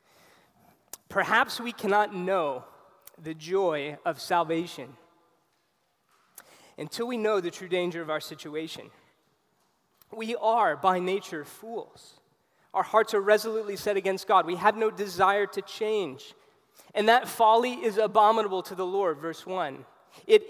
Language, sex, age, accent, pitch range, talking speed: English, male, 20-39, American, 165-210 Hz, 135 wpm